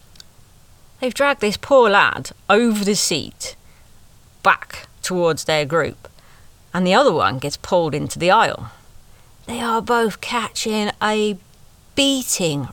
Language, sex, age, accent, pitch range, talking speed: English, female, 40-59, British, 150-210 Hz, 125 wpm